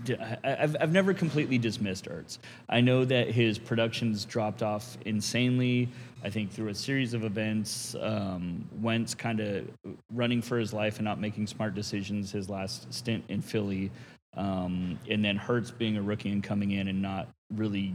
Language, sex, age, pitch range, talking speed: English, male, 30-49, 100-115 Hz, 175 wpm